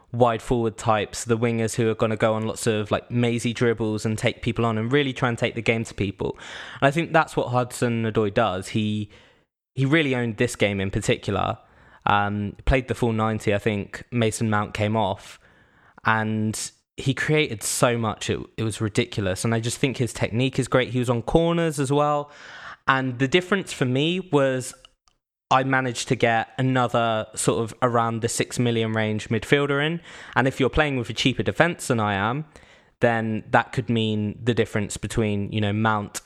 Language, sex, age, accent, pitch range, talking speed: English, male, 20-39, British, 110-130 Hz, 200 wpm